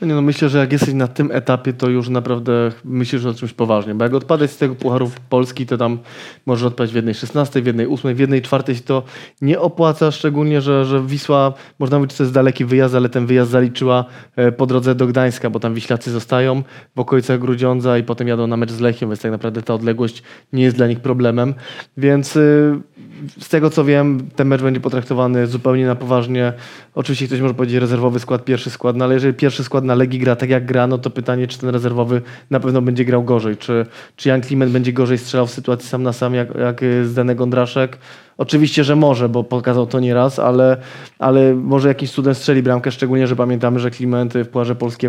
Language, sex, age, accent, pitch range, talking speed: Polish, male, 20-39, native, 125-135 Hz, 220 wpm